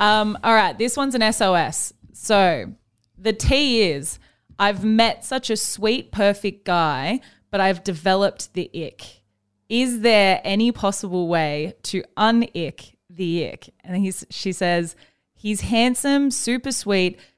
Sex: female